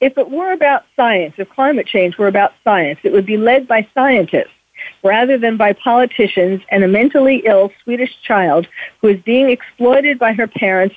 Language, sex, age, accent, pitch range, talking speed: English, female, 50-69, American, 195-260 Hz, 185 wpm